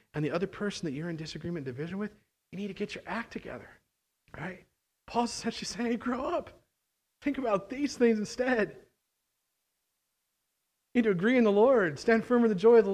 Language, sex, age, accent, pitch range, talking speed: English, male, 40-59, American, 110-150 Hz, 205 wpm